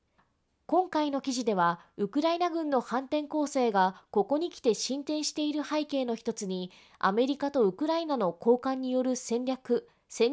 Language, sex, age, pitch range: Japanese, female, 20-39, 195-290 Hz